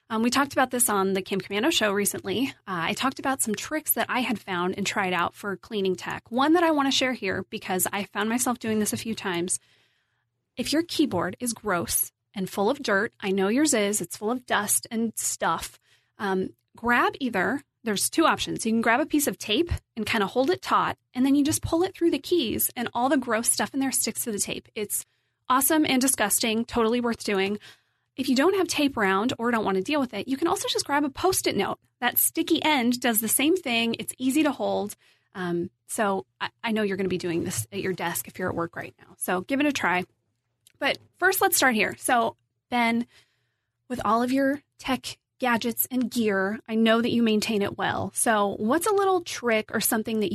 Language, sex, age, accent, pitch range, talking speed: English, female, 30-49, American, 195-265 Hz, 230 wpm